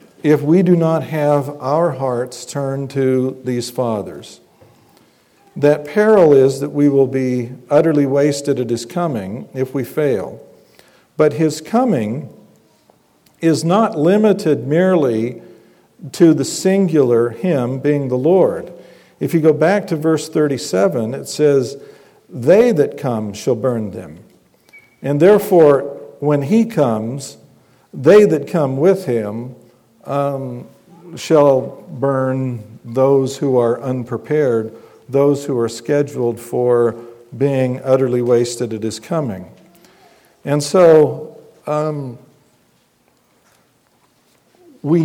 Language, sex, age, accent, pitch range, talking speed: English, male, 50-69, American, 125-155 Hz, 115 wpm